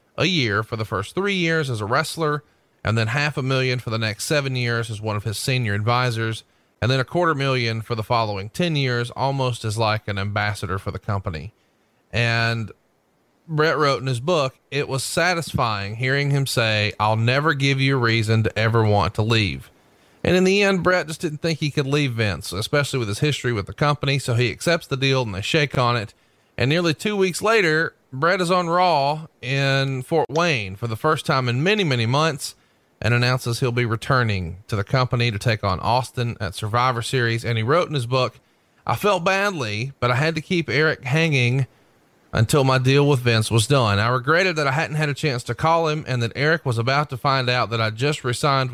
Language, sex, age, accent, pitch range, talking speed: English, male, 30-49, American, 110-150 Hz, 220 wpm